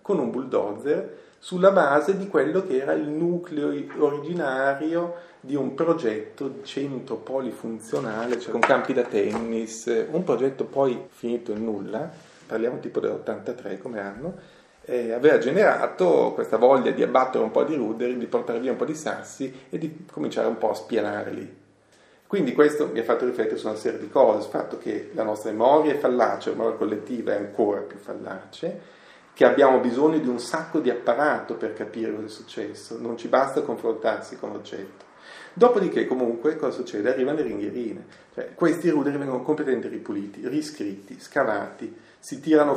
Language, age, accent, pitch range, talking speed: Italian, 40-59, native, 125-175 Hz, 170 wpm